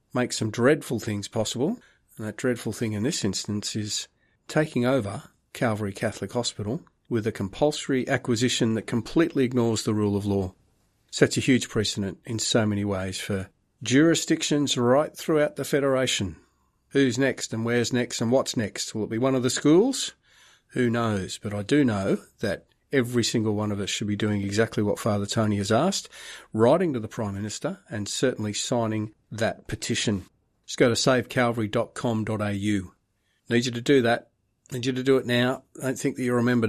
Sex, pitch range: male, 105-130 Hz